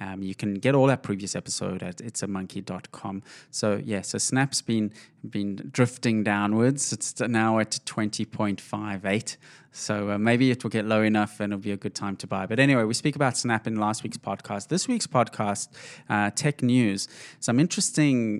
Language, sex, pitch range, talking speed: English, male, 105-130 Hz, 185 wpm